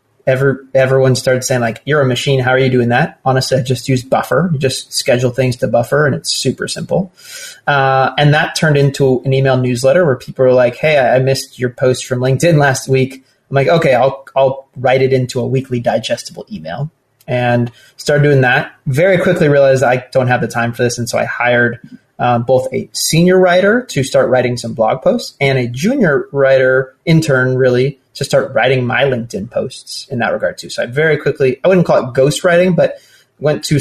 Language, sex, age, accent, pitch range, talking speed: English, male, 30-49, American, 125-140 Hz, 210 wpm